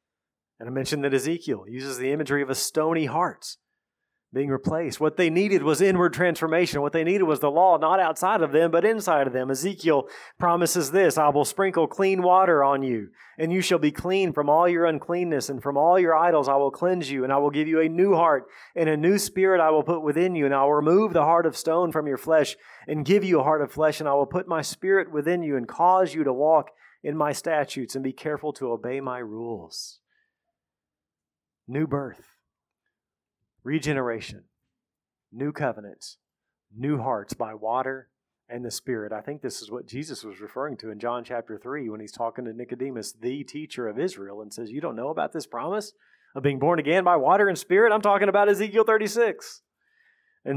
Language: English